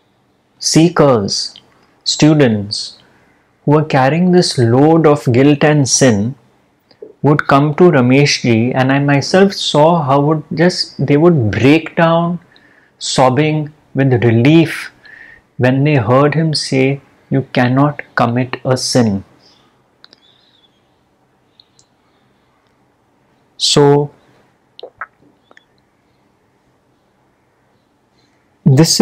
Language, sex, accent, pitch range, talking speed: English, male, Indian, 125-155 Hz, 85 wpm